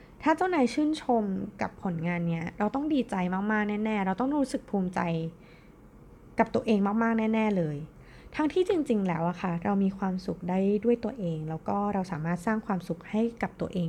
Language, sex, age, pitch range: Thai, female, 20-39, 175-240 Hz